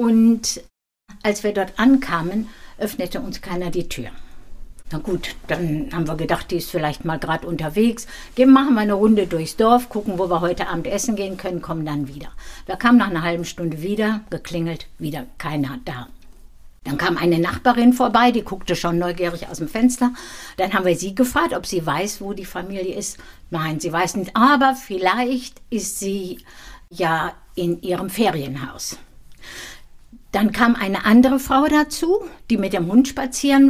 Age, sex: 60-79, female